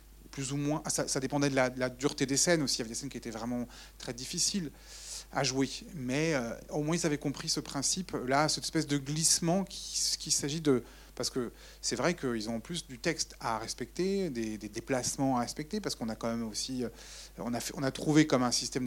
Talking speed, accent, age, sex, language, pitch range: 240 wpm, French, 30-49, male, French, 120-150 Hz